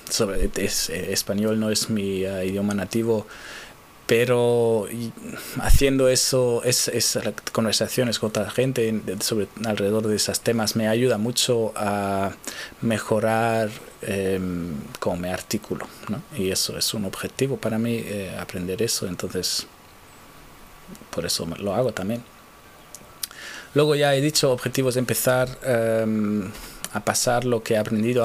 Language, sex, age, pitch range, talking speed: Spanish, male, 20-39, 95-115 Hz, 120 wpm